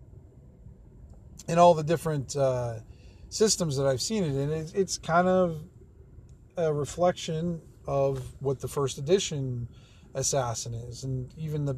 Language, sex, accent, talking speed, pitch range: English, male, American, 130 wpm, 125-155 Hz